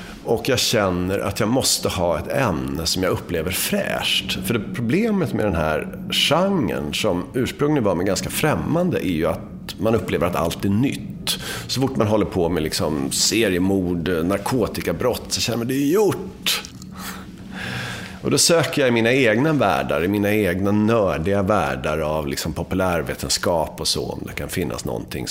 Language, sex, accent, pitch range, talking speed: English, male, Swedish, 90-120 Hz, 170 wpm